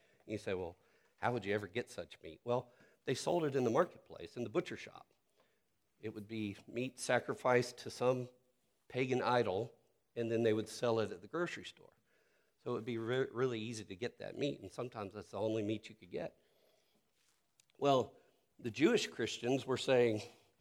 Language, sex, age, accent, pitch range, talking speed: English, male, 50-69, American, 115-155 Hz, 195 wpm